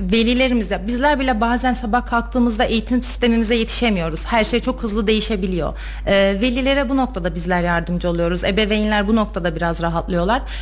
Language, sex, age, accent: Turkish, female, 30-49, native